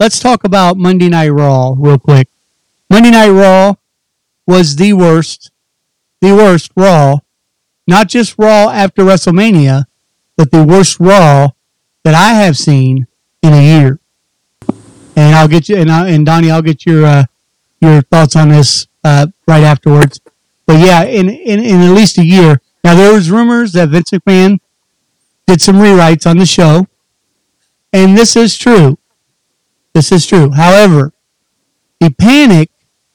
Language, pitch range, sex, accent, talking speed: English, 150-190 Hz, male, American, 150 wpm